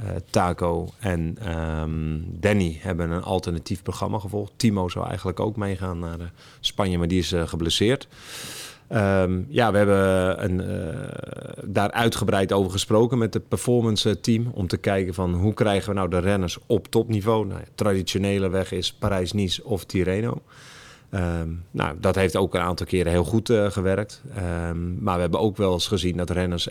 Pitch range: 90-110 Hz